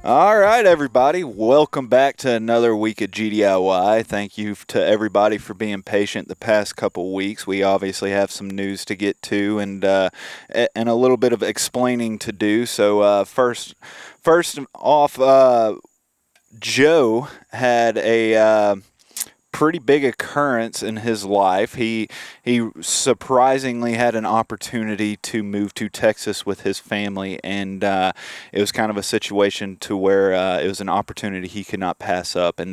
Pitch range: 100-115 Hz